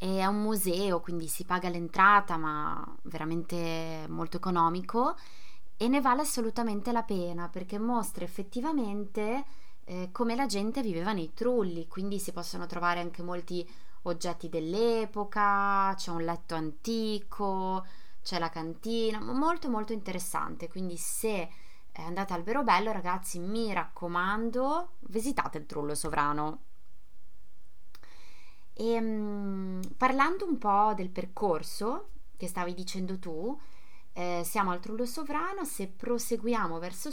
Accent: native